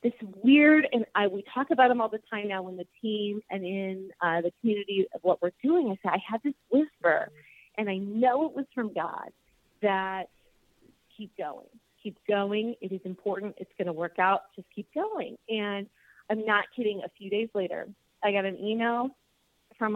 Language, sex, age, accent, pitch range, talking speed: English, female, 30-49, American, 185-230 Hz, 200 wpm